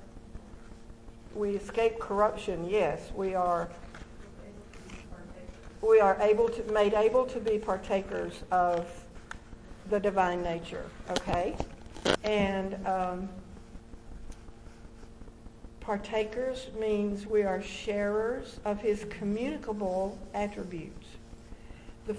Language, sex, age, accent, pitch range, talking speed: English, female, 50-69, American, 195-220 Hz, 85 wpm